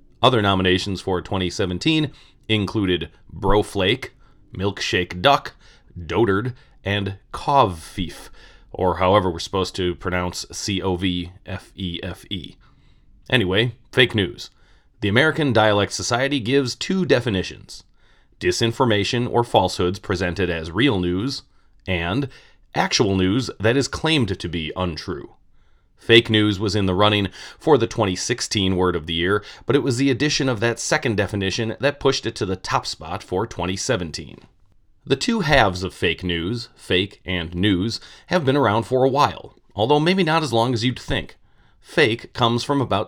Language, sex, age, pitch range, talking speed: English, male, 30-49, 95-125 Hz, 145 wpm